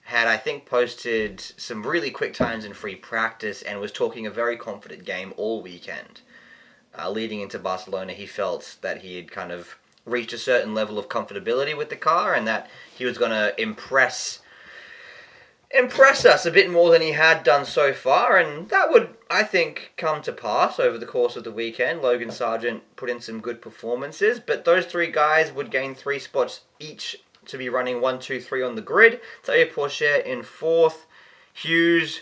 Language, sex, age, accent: English, male, 20-39, Australian